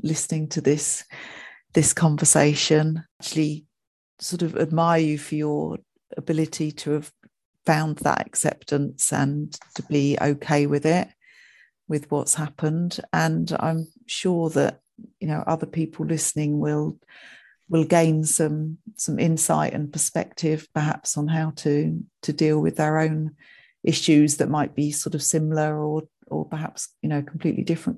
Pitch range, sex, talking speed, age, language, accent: 150-175 Hz, female, 145 wpm, 40-59, English, British